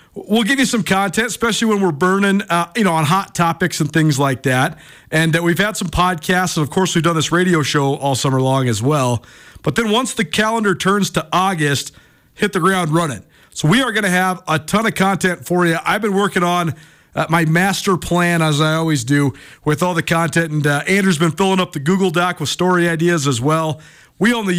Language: English